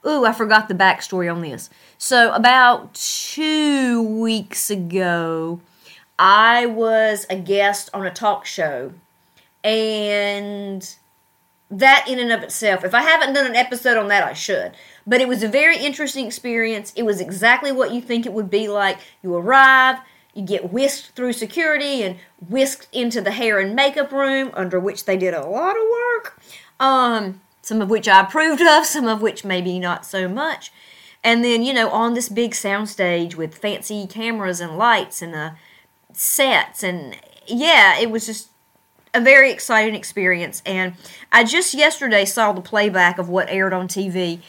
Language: English